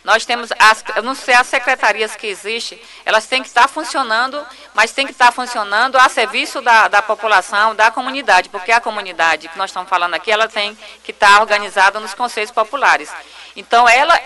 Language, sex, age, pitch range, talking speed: Portuguese, female, 40-59, 200-250 Hz, 190 wpm